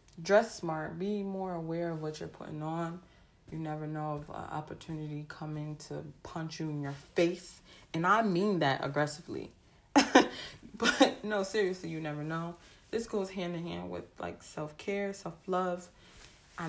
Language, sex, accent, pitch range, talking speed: English, female, American, 150-190 Hz, 165 wpm